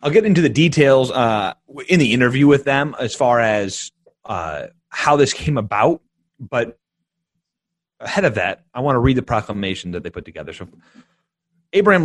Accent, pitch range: American, 110-155 Hz